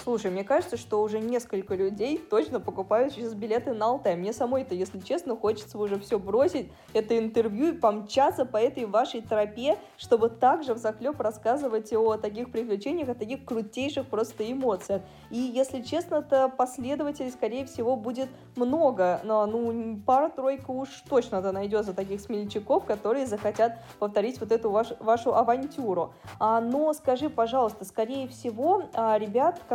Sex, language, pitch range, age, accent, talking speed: female, Russian, 210-260 Hz, 20-39, native, 145 wpm